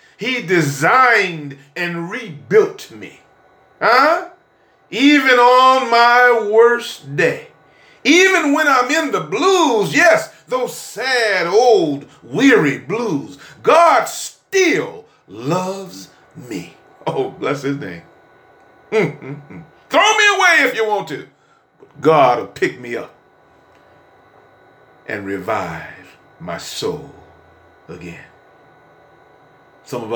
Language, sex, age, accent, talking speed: English, male, 40-59, American, 100 wpm